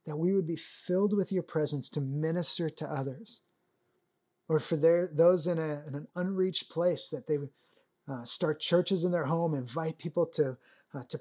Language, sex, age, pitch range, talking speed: English, male, 30-49, 140-180 Hz, 195 wpm